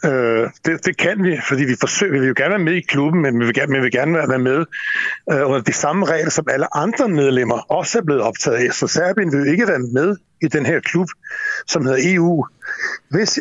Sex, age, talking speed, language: male, 60-79, 240 wpm, Danish